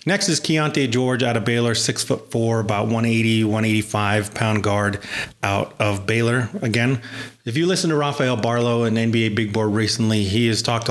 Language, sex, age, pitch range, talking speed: English, male, 30-49, 105-120 Hz, 180 wpm